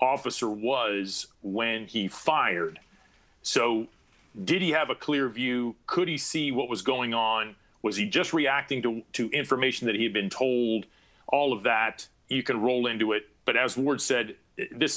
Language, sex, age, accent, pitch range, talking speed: English, male, 40-59, American, 120-195 Hz, 175 wpm